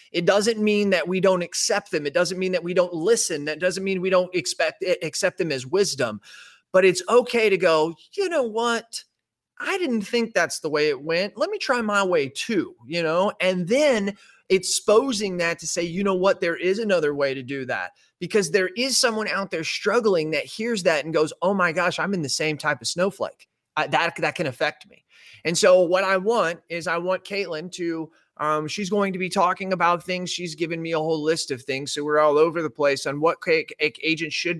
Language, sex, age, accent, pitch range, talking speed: English, male, 30-49, American, 155-200 Hz, 225 wpm